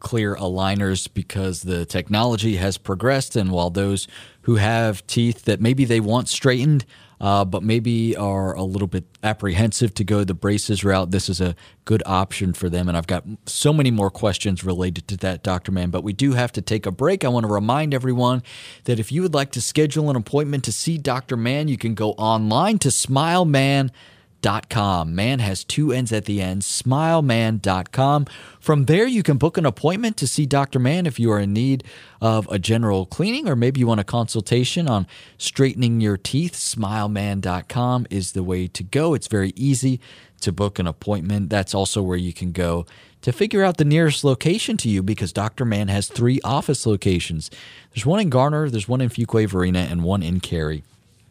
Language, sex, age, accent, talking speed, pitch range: English, male, 30-49, American, 195 wpm, 95-130 Hz